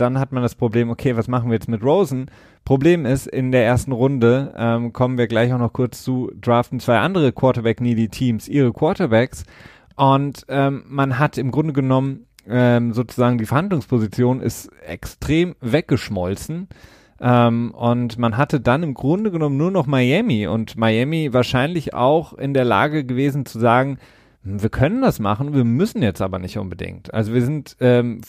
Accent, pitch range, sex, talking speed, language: German, 110-135 Hz, male, 170 wpm, German